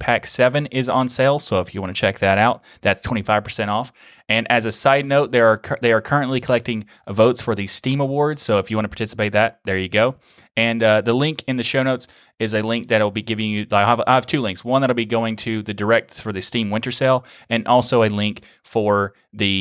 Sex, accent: male, American